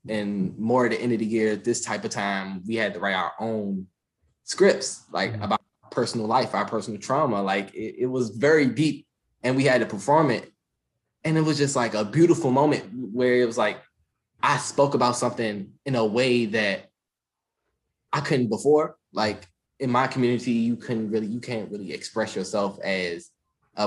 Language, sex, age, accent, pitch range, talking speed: English, male, 20-39, American, 105-130 Hz, 190 wpm